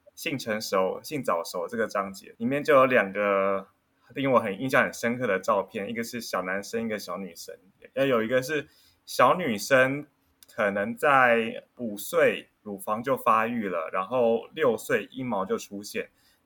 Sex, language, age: male, Chinese, 20-39